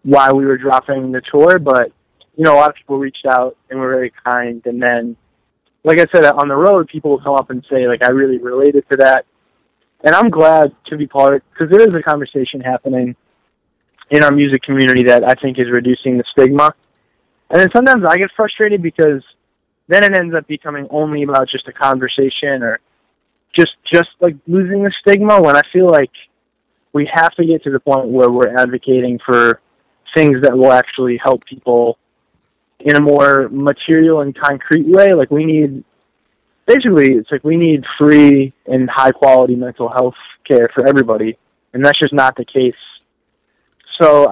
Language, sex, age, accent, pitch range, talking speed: English, male, 20-39, American, 125-155 Hz, 185 wpm